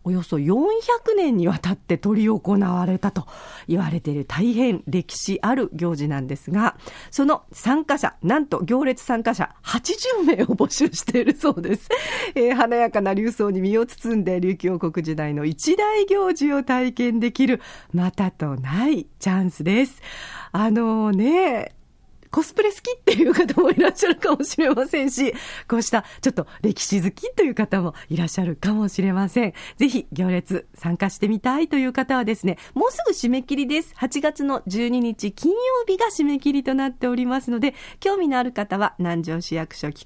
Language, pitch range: Japanese, 180-290 Hz